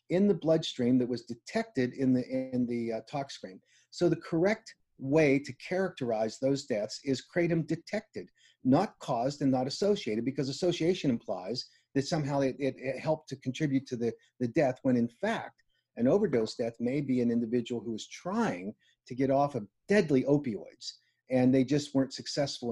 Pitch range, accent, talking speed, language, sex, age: 125-165 Hz, American, 175 wpm, English, male, 40-59